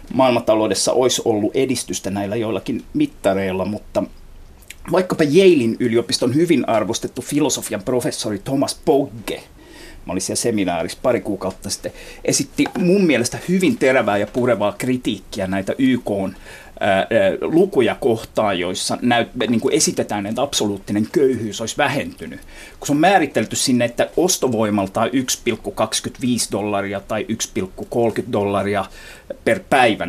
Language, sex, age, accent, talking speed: Finnish, male, 30-49, native, 120 wpm